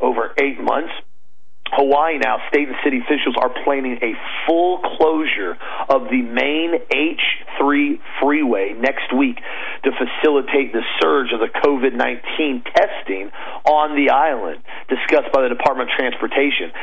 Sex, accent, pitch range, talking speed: male, American, 130-160 Hz, 135 wpm